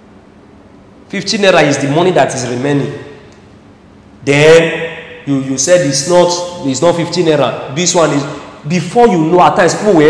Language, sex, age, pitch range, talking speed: English, male, 40-59, 110-180 Hz, 165 wpm